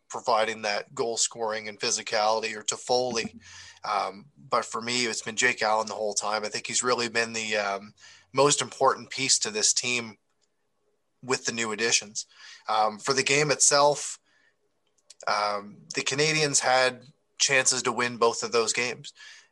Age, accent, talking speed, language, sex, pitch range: 20-39, American, 165 wpm, English, male, 110-140 Hz